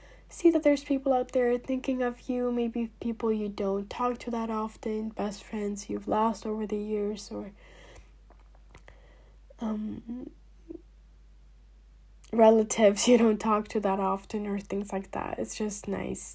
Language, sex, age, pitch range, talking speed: English, female, 10-29, 205-250 Hz, 145 wpm